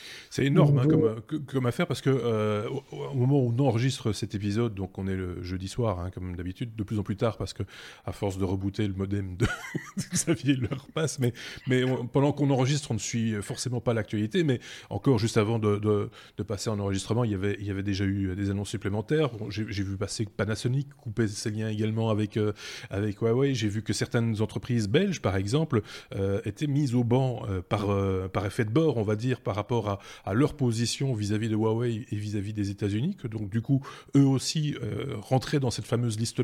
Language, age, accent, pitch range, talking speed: French, 20-39, French, 105-135 Hz, 225 wpm